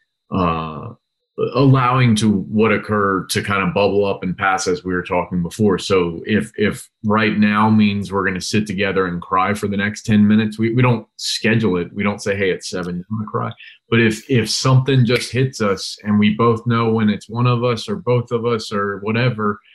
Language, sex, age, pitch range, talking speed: English, male, 30-49, 100-115 Hz, 220 wpm